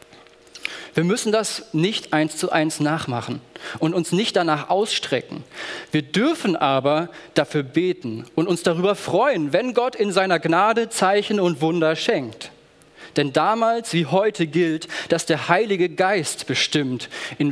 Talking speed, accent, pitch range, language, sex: 145 wpm, German, 150-210 Hz, German, male